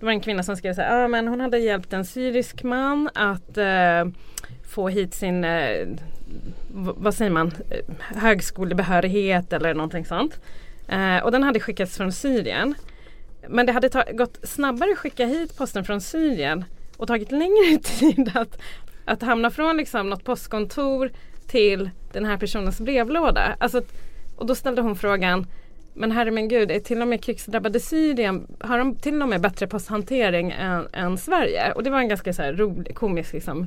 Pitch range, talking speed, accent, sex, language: 190-260 Hz, 170 wpm, Swedish, female, English